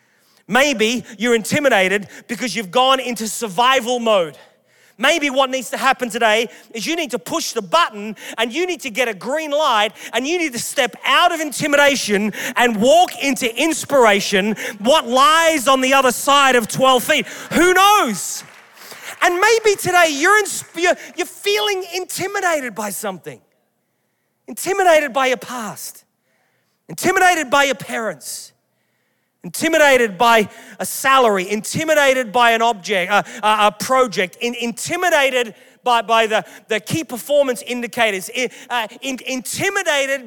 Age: 30-49